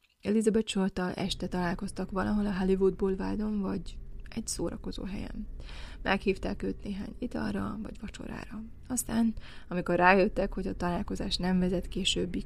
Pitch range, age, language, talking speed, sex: 180-205 Hz, 20-39, Hungarian, 130 wpm, female